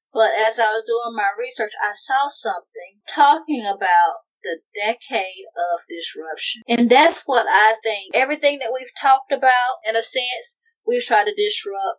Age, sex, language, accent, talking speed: 40-59, female, English, American, 165 wpm